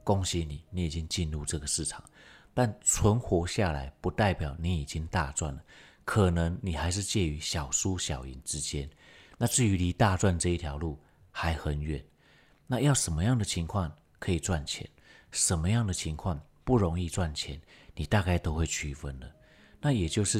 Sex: male